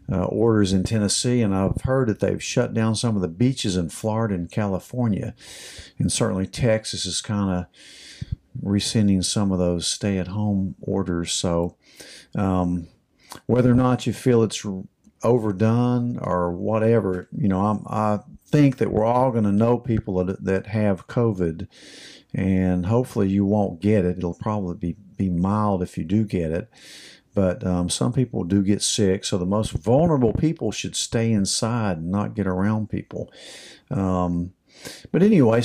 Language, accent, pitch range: English, American, 95-115 Hz